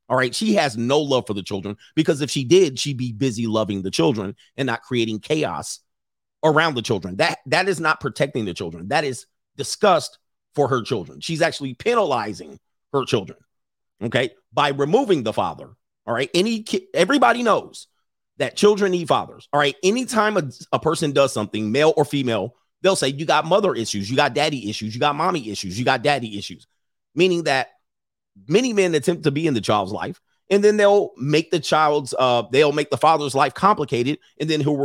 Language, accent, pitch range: English, American, 130-180 Hz